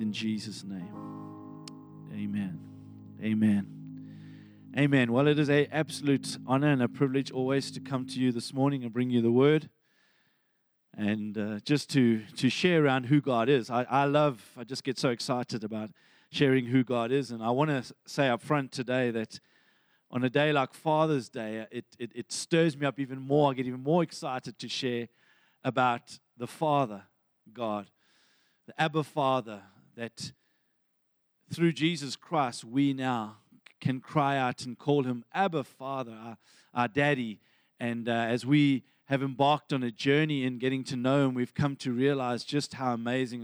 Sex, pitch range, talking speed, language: male, 120-145 Hz, 175 wpm, English